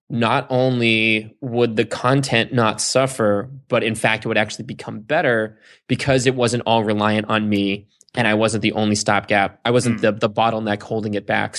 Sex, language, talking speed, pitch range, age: male, English, 185 wpm, 110-125 Hz, 20-39